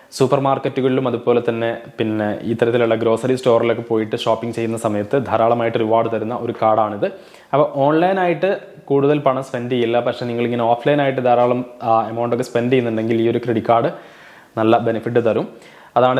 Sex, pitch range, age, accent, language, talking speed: male, 115-130 Hz, 20-39, native, Malayalam, 145 wpm